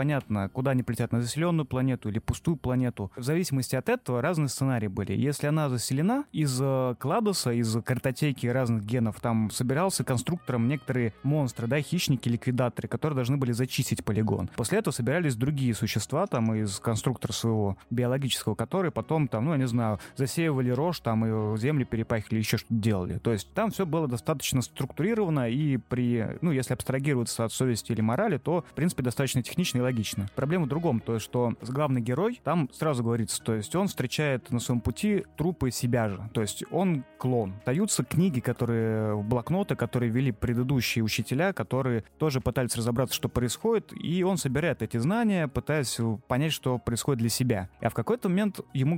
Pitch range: 115-155 Hz